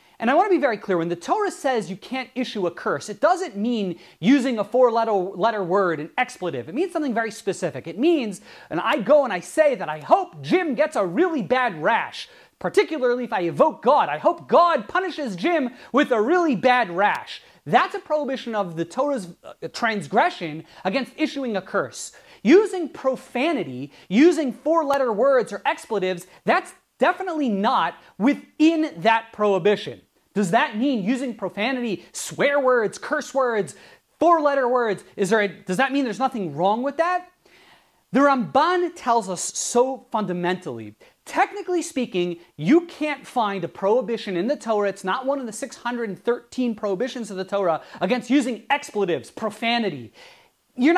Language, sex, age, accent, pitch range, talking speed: English, male, 30-49, American, 200-295 Hz, 165 wpm